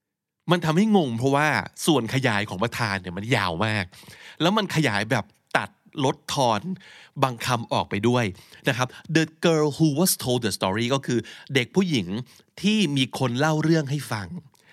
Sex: male